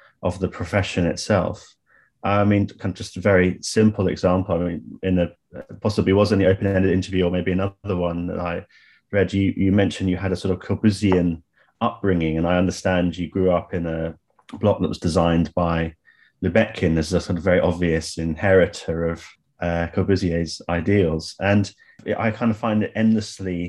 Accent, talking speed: British, 185 wpm